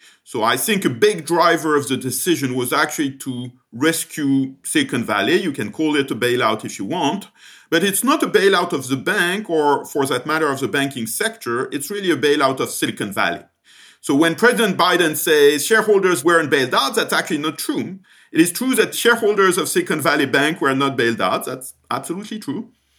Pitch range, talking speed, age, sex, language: 120-170 Hz, 200 wpm, 50-69, male, English